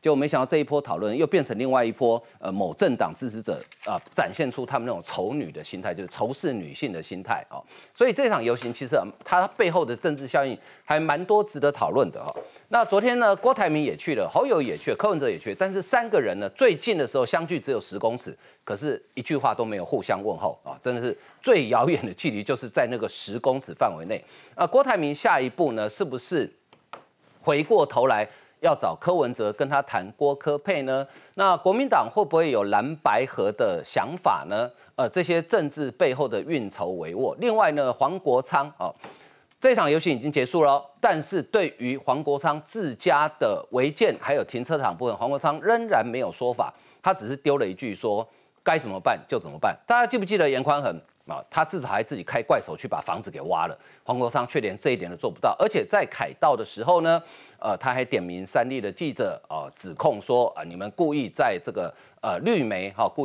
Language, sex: Chinese, male